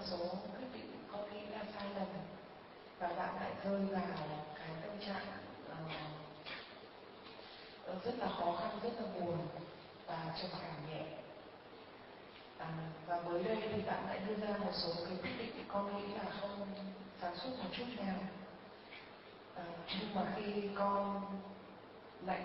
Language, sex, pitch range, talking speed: Vietnamese, female, 175-205 Hz, 155 wpm